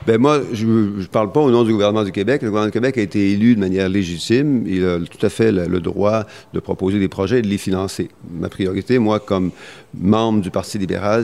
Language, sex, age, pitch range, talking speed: French, male, 40-59, 100-125 Hz, 245 wpm